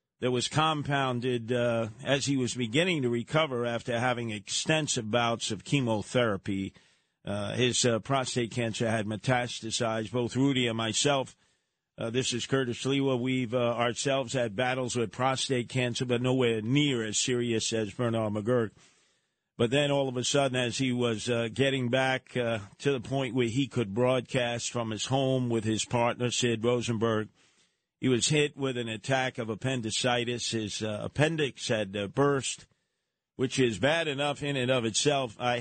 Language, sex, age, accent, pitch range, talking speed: English, male, 50-69, American, 115-130 Hz, 165 wpm